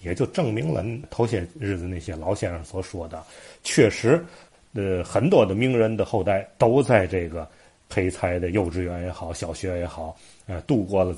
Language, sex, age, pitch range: Chinese, male, 30-49, 90-115 Hz